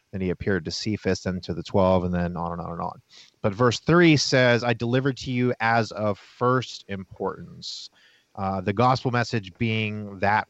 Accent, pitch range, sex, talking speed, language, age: American, 95-115 Hz, male, 195 wpm, English, 30-49